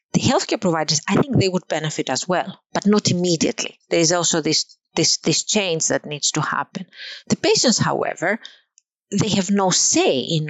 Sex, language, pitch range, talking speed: female, English, 155-205 Hz, 175 wpm